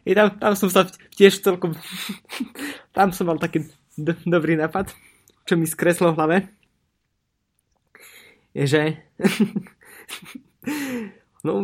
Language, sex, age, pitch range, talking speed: Slovak, male, 20-39, 135-175 Hz, 110 wpm